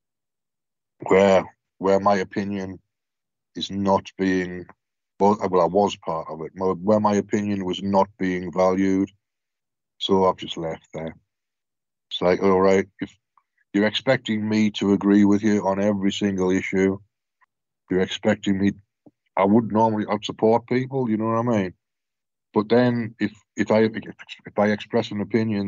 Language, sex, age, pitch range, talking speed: English, male, 50-69, 95-110 Hz, 155 wpm